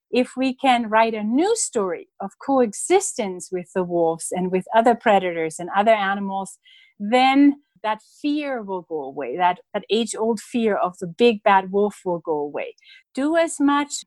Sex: female